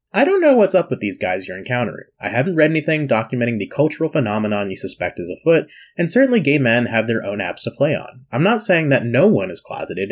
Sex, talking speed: male, 245 wpm